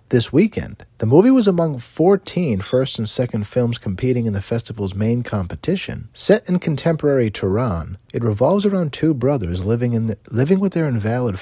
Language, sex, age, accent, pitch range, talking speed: English, male, 40-59, American, 100-140 Hz, 175 wpm